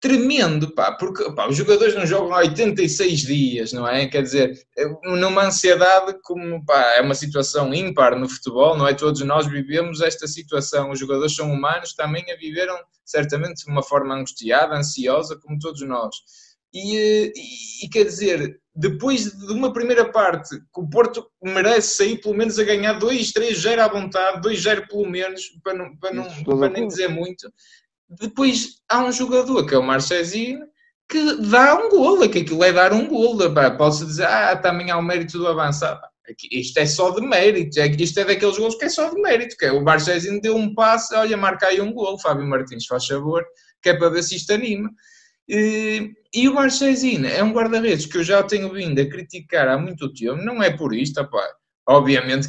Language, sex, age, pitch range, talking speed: Portuguese, male, 20-39, 150-220 Hz, 195 wpm